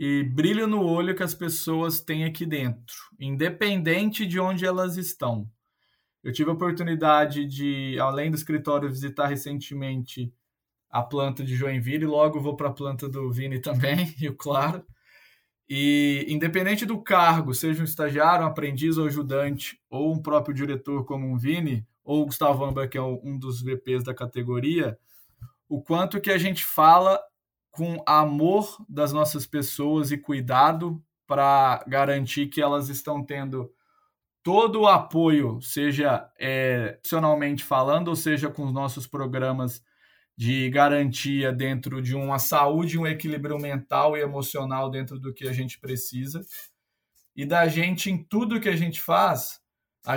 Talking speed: 155 wpm